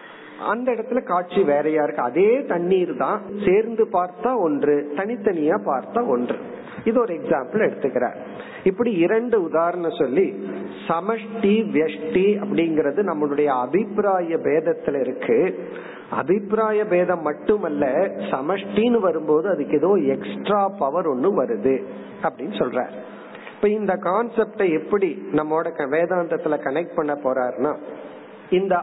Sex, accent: male, native